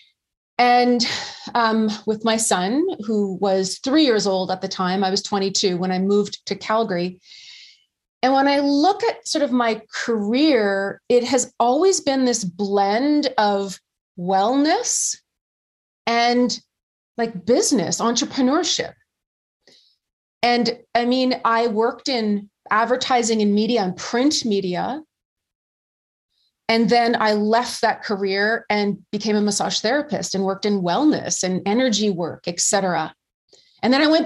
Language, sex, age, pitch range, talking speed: English, female, 30-49, 200-250 Hz, 135 wpm